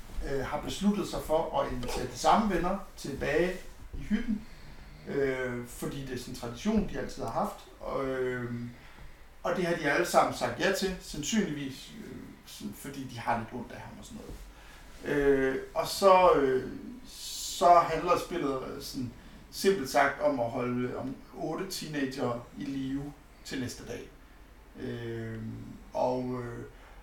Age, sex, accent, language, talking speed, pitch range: 60-79, male, native, Danish, 155 wpm, 125-170 Hz